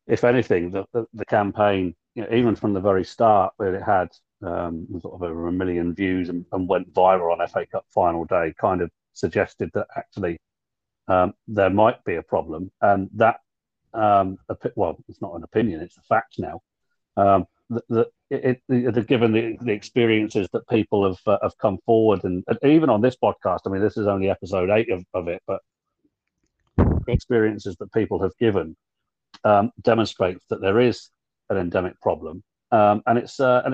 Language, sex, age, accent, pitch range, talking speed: English, male, 40-59, British, 95-115 Hz, 195 wpm